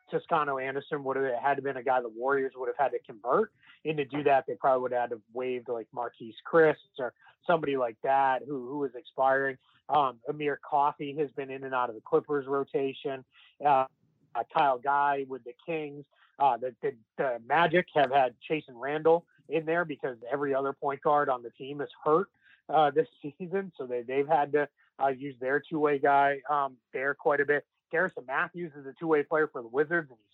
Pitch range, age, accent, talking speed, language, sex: 130-155 Hz, 30-49, American, 215 wpm, English, male